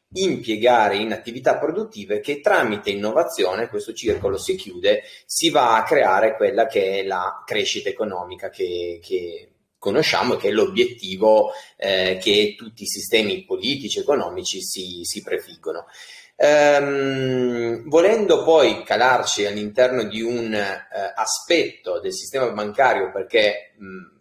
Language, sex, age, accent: Italian, male, 30-49, native